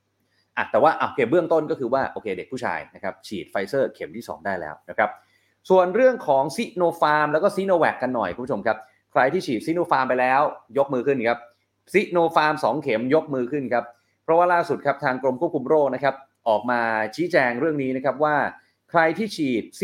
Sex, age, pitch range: male, 30-49, 110-160 Hz